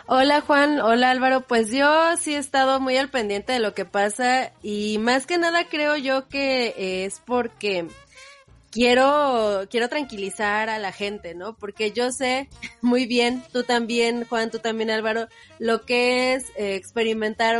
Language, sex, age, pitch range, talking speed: Spanish, female, 20-39, 205-260 Hz, 160 wpm